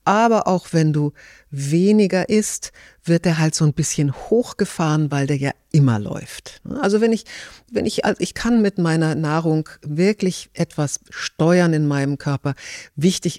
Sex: female